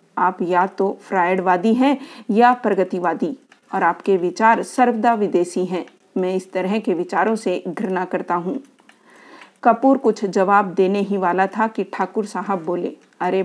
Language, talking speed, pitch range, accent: Hindi, 150 wpm, 185-230 Hz, native